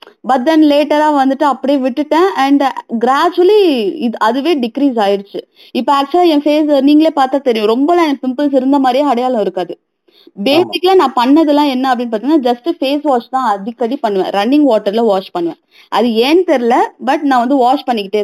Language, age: Tamil, 20-39